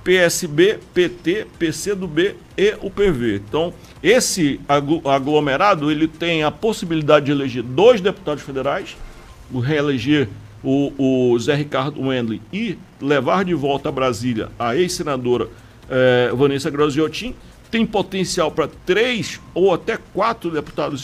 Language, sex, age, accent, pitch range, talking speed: Portuguese, male, 50-69, Brazilian, 140-185 Hz, 130 wpm